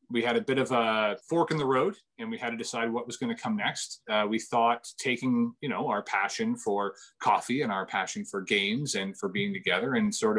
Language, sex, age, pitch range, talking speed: English, male, 30-49, 115-190 Hz, 245 wpm